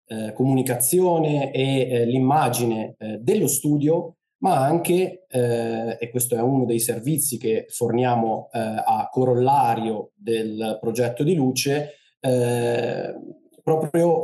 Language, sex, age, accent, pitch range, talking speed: Italian, male, 20-39, native, 120-145 Hz, 115 wpm